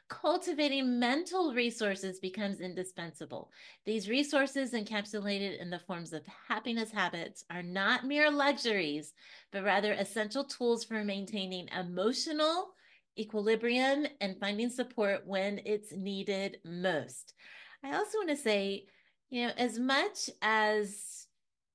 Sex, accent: female, American